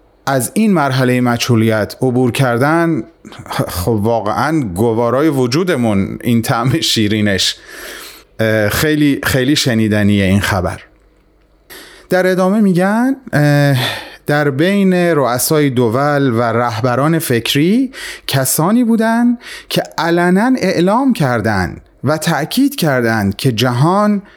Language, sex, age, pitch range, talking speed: Persian, male, 30-49, 115-165 Hz, 95 wpm